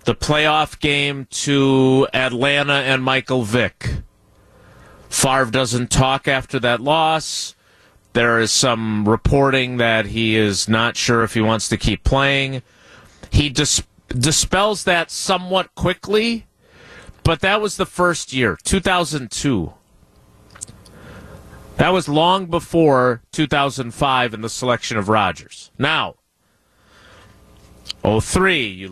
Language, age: English, 30-49